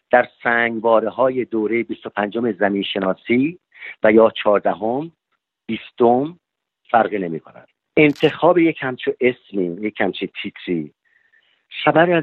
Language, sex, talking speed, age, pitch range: English, male, 115 wpm, 50-69, 105-145 Hz